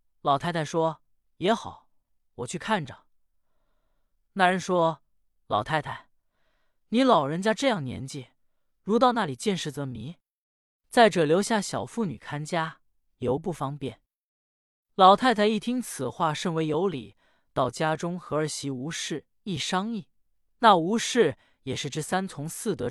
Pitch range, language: 130-190 Hz, Chinese